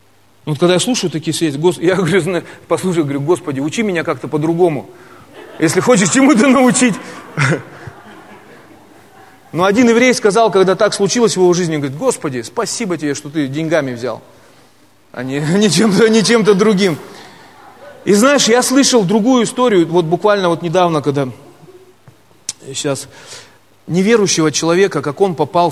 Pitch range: 145-190 Hz